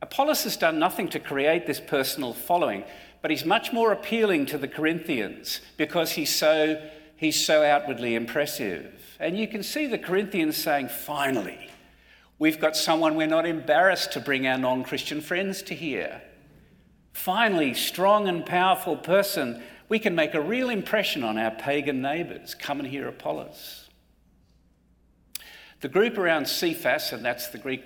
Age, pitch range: 50-69, 115-175 Hz